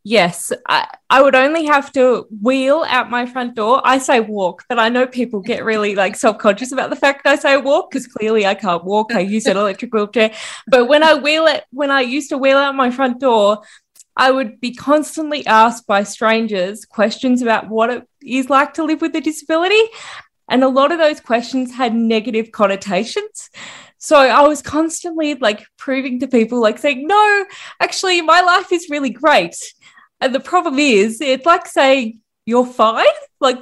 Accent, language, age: Australian, English, 20-39